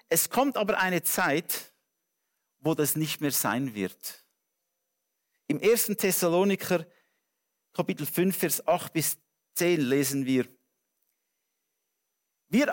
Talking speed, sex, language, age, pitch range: 105 wpm, male, English, 50-69, 160-230 Hz